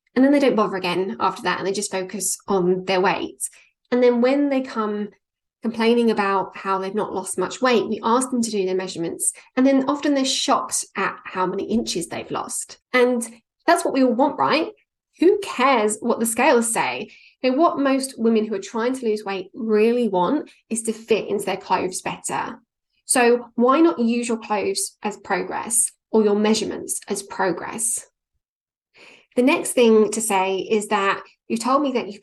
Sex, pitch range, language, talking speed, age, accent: female, 195-245 Hz, English, 190 wpm, 10-29, British